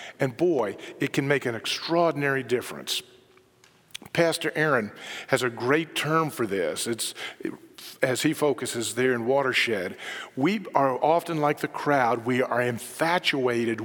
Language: English